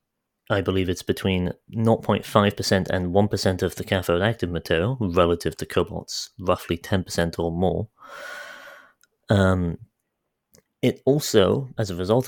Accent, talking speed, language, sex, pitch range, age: British, 120 wpm, English, male, 85-110 Hz, 30-49